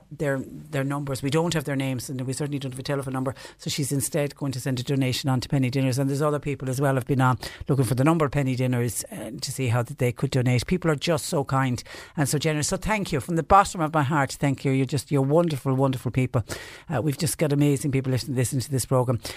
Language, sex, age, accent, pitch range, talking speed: English, female, 60-79, Irish, 130-160 Hz, 275 wpm